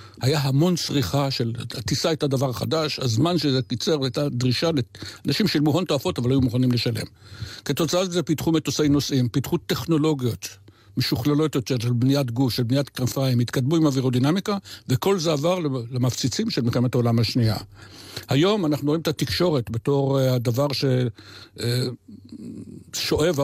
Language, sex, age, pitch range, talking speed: Hebrew, male, 60-79, 120-150 Hz, 145 wpm